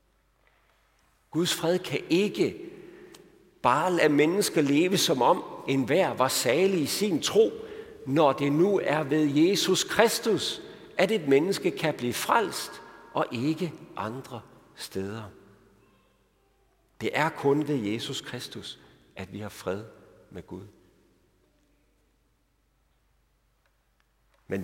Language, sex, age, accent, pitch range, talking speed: Danish, male, 60-79, native, 105-155 Hz, 115 wpm